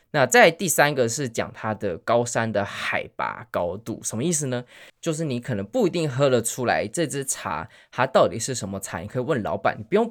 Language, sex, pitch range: Chinese, male, 105-140 Hz